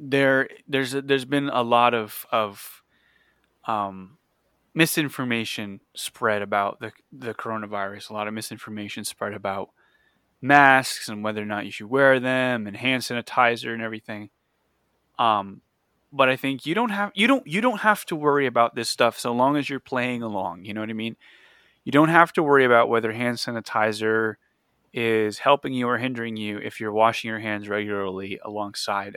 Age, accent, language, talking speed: 20-39, American, English, 175 wpm